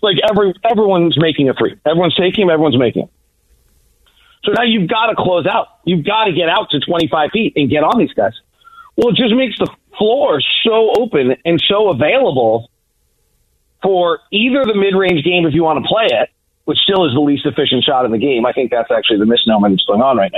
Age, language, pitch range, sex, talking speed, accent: 40-59, English, 145-200 Hz, male, 220 wpm, American